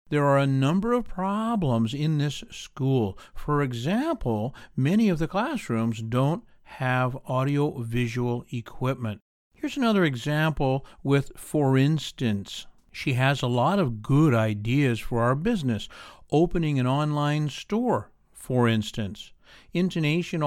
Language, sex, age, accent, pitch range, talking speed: English, male, 60-79, American, 115-150 Hz, 125 wpm